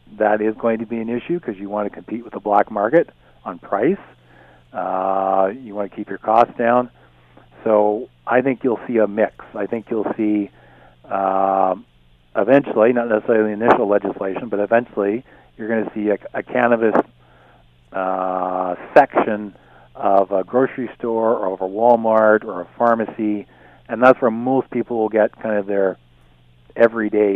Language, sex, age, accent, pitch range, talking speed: English, male, 50-69, American, 100-120 Hz, 170 wpm